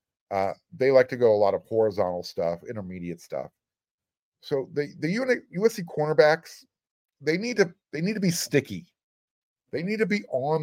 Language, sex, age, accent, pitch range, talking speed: English, male, 50-69, American, 110-170 Hz, 175 wpm